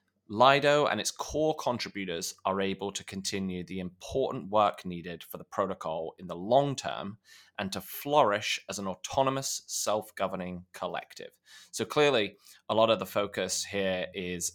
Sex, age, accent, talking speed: male, 20-39, British, 155 wpm